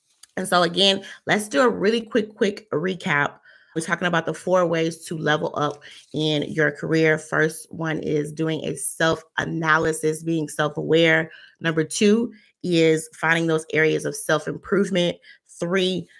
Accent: American